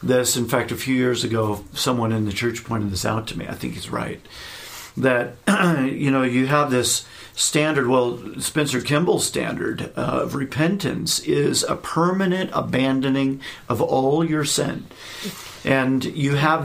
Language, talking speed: English, 160 wpm